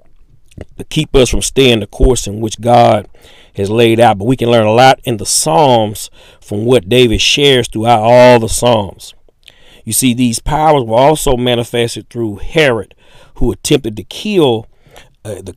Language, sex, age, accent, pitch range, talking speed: English, male, 40-59, American, 110-135 Hz, 175 wpm